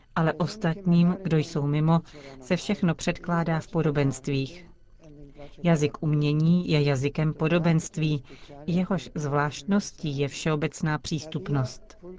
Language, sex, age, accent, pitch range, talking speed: Czech, female, 40-59, native, 140-170 Hz, 100 wpm